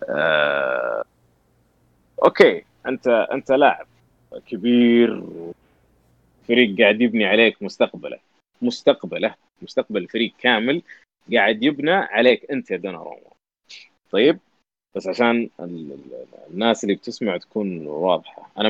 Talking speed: 95 wpm